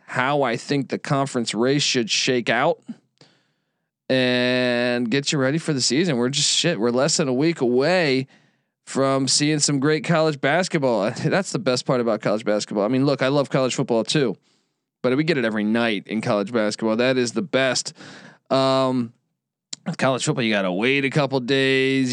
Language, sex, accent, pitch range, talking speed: English, male, American, 130-160 Hz, 190 wpm